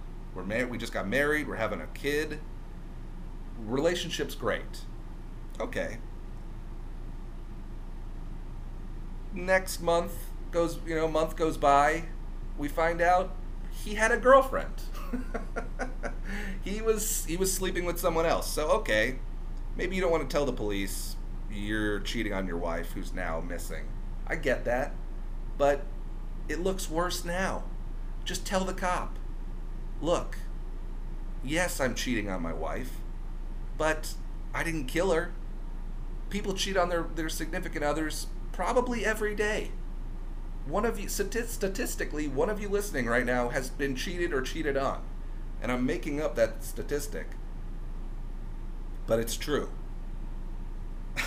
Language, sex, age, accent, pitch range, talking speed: English, male, 40-59, American, 135-185 Hz, 130 wpm